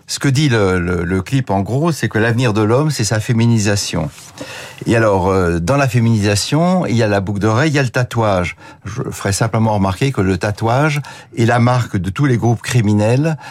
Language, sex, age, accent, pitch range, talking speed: French, male, 60-79, French, 105-135 Hz, 220 wpm